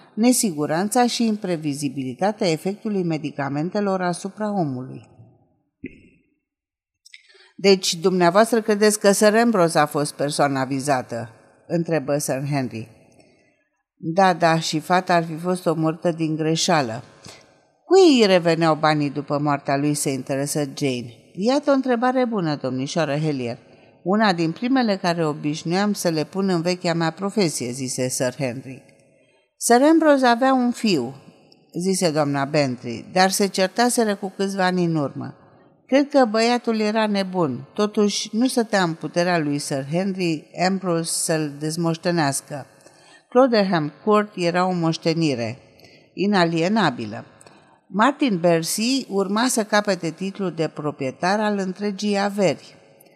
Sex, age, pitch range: female, 50-69, 145-205 Hz